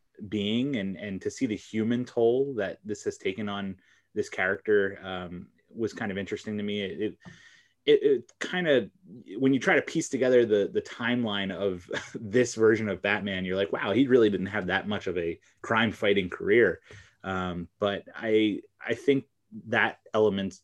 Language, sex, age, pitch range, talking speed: English, male, 20-39, 95-115 Hz, 175 wpm